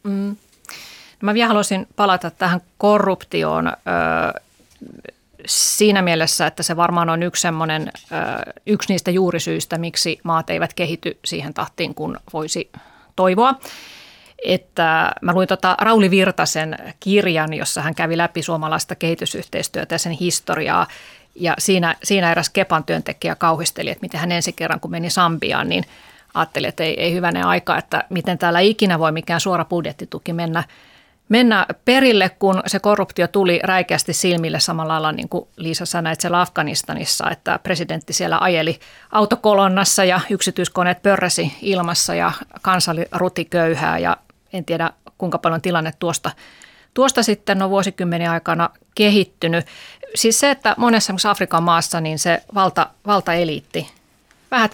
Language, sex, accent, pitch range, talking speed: Finnish, female, native, 165-195 Hz, 140 wpm